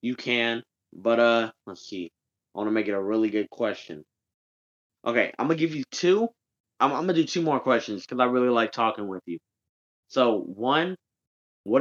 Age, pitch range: 20-39, 110-130 Hz